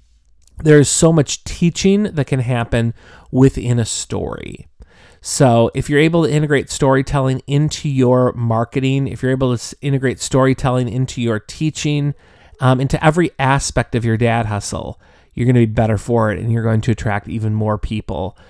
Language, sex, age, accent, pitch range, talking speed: English, male, 30-49, American, 110-145 Hz, 170 wpm